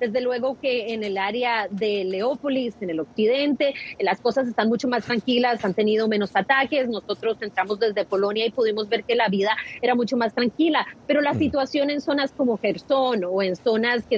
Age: 30-49